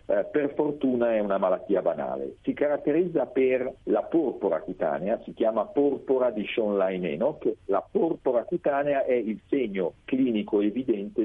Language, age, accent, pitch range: Italian, 50-69, native, 110-140 Hz